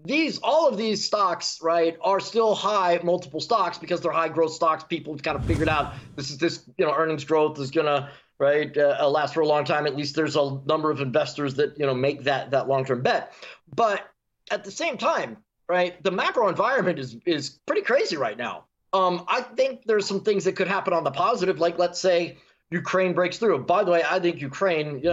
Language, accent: English, American